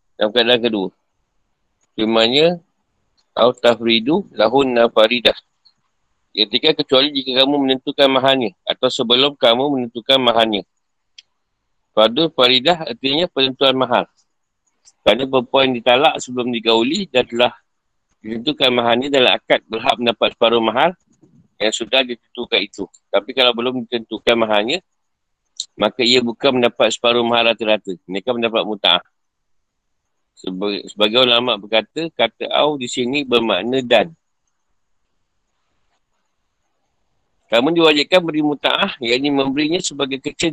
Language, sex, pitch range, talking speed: Malay, male, 120-145 Hz, 110 wpm